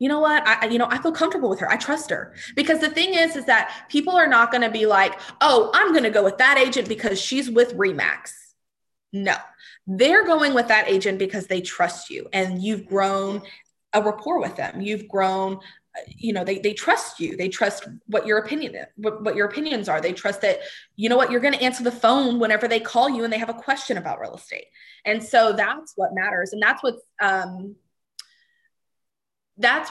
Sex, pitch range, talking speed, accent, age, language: female, 185-245 Hz, 215 wpm, American, 20-39, English